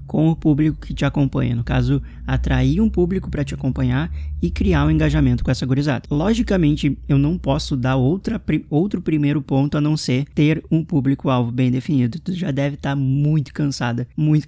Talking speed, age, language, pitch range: 195 wpm, 20-39, Portuguese, 130-160 Hz